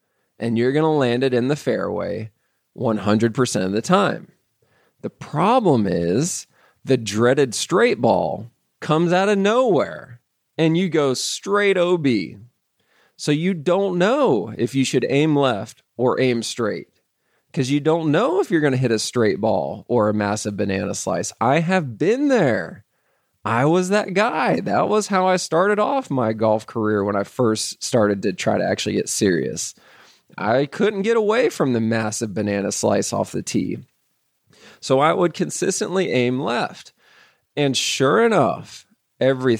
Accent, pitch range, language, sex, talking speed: American, 115-180 Hz, English, male, 160 wpm